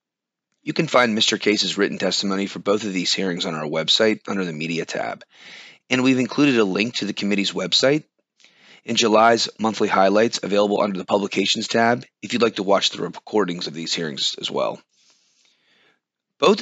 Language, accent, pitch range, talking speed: English, American, 100-120 Hz, 180 wpm